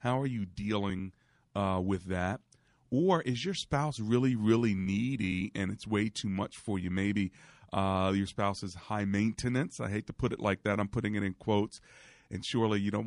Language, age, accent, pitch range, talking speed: English, 40-59, American, 100-115 Hz, 200 wpm